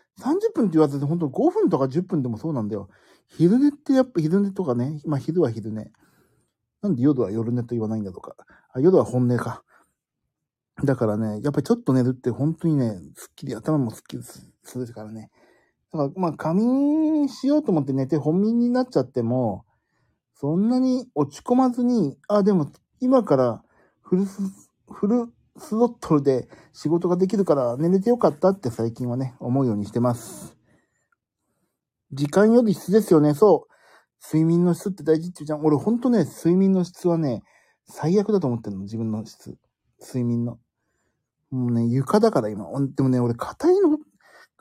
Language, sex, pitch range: Japanese, male, 125-205 Hz